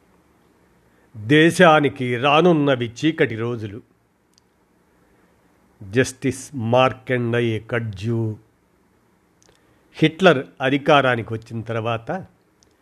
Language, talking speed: Telugu, 50 wpm